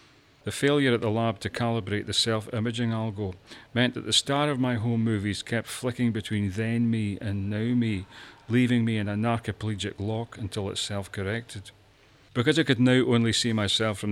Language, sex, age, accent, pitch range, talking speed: English, male, 40-59, British, 100-115 Hz, 185 wpm